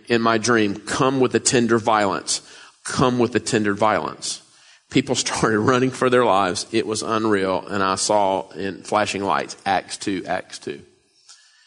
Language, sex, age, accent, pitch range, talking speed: English, male, 40-59, American, 105-120 Hz, 165 wpm